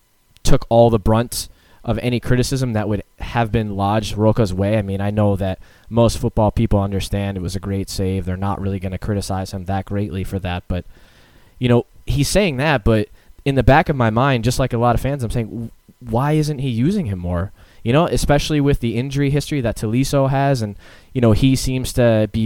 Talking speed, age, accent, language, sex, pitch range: 220 wpm, 20-39, American, English, male, 100-125 Hz